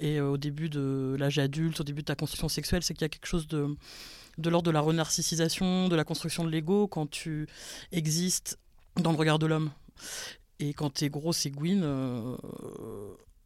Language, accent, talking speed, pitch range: French, French, 195 wpm, 145-165 Hz